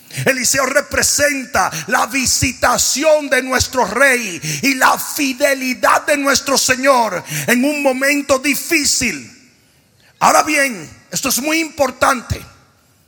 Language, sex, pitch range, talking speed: Spanish, male, 210-290 Hz, 105 wpm